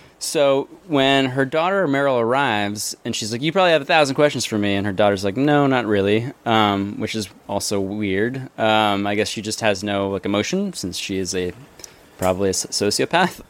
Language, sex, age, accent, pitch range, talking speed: English, male, 20-39, American, 100-130 Hz, 200 wpm